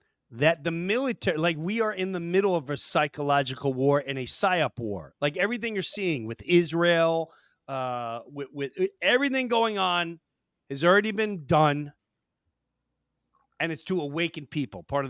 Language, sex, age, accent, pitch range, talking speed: English, male, 30-49, American, 140-190 Hz, 165 wpm